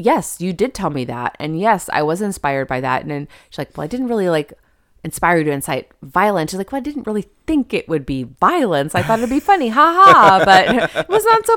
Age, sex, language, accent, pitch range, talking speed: 20-39, female, English, American, 155-215 Hz, 260 wpm